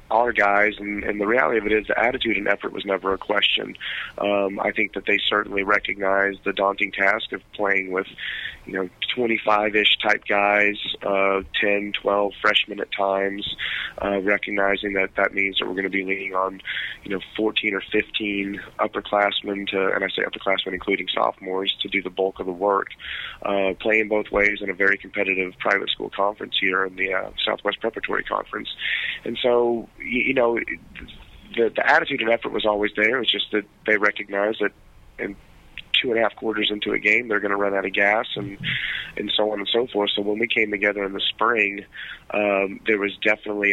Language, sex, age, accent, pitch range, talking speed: English, male, 20-39, American, 95-105 Hz, 195 wpm